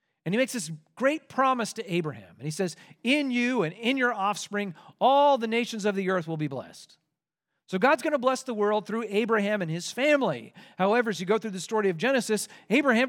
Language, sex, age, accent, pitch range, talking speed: English, male, 40-59, American, 170-235 Hz, 220 wpm